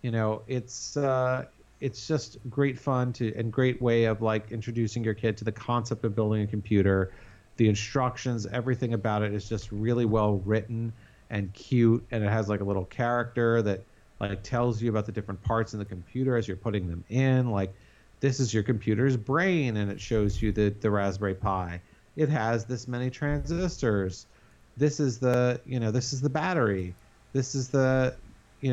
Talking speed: 190 wpm